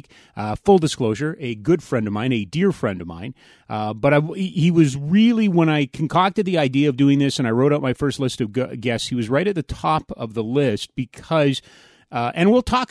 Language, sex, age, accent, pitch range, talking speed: English, male, 30-49, American, 110-150 Hz, 230 wpm